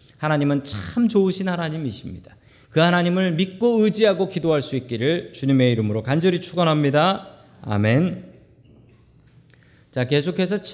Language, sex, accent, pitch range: Korean, male, native, 110-165 Hz